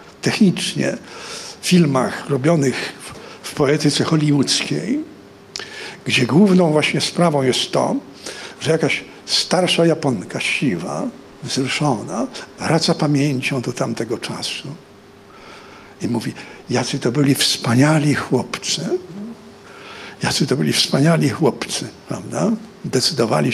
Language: Polish